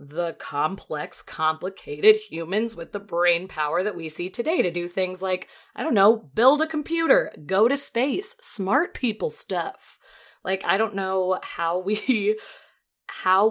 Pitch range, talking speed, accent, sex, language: 160-215 Hz, 155 wpm, American, female, English